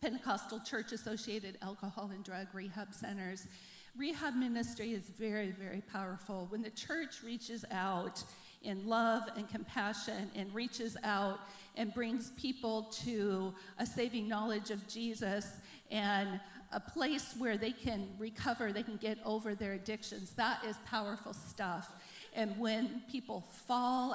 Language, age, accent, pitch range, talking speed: English, 50-69, American, 195-230 Hz, 135 wpm